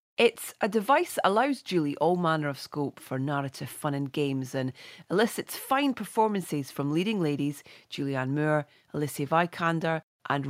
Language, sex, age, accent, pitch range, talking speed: English, female, 30-49, British, 145-205 Hz, 155 wpm